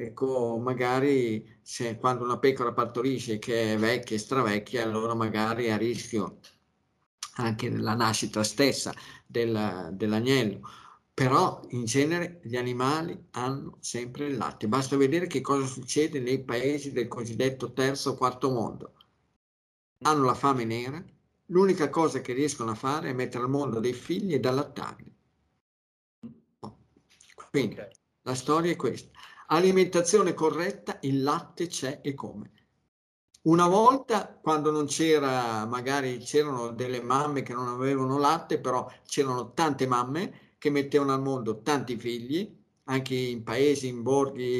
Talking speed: 135 wpm